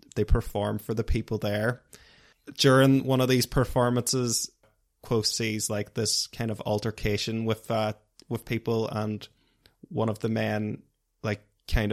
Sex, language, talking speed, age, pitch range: male, English, 145 wpm, 20-39, 105-120 Hz